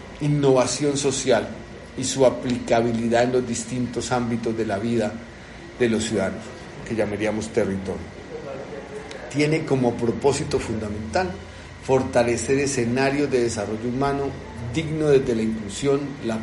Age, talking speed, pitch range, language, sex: 50-69, 115 wpm, 115-135 Hz, Spanish, male